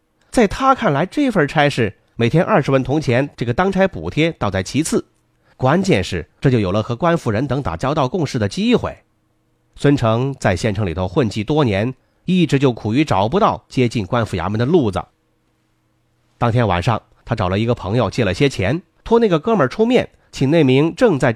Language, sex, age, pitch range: Chinese, male, 30-49, 105-155 Hz